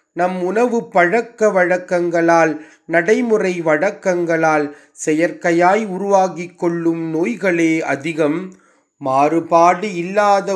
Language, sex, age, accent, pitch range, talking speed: Tamil, male, 30-49, native, 155-200 Hz, 75 wpm